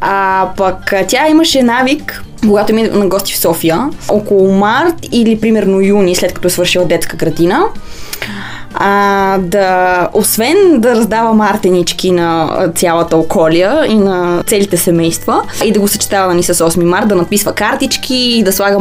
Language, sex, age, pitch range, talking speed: Bulgarian, female, 20-39, 185-260 Hz, 155 wpm